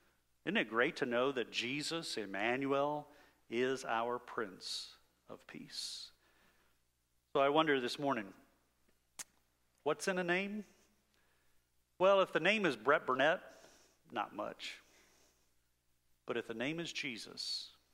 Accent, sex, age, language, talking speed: American, male, 50-69, English, 125 wpm